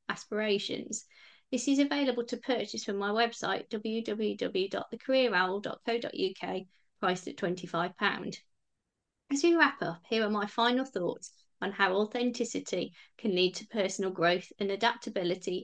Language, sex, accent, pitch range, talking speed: English, female, British, 195-255 Hz, 125 wpm